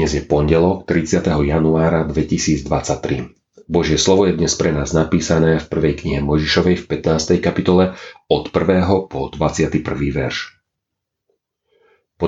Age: 40-59